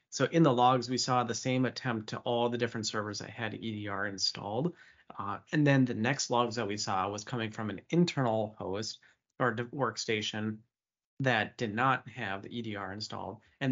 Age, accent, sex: 30-49, American, male